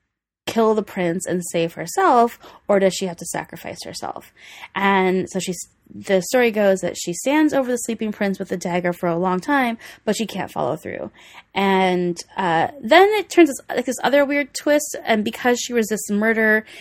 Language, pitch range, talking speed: English, 185-265 Hz, 190 wpm